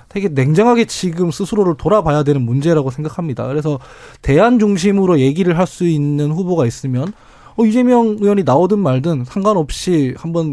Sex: male